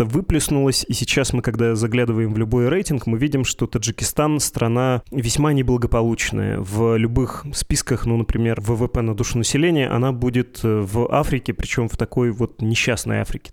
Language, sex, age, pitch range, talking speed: Russian, male, 20-39, 115-130 Hz, 160 wpm